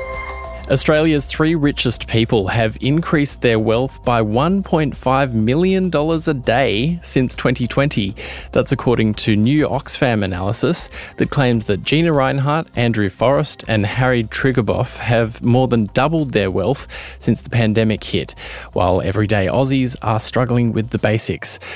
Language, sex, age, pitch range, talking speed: English, male, 10-29, 110-135 Hz, 135 wpm